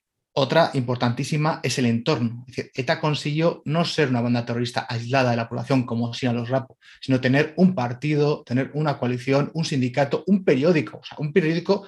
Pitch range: 125-155 Hz